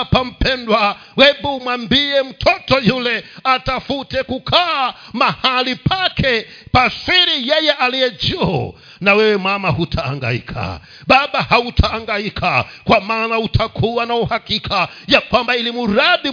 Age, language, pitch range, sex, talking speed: 50-69, Swahili, 165-275 Hz, male, 100 wpm